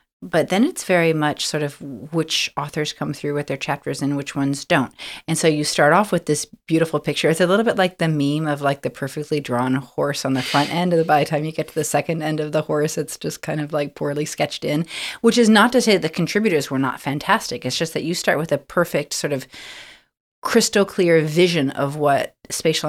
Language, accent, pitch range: English, American, 145-175 Hz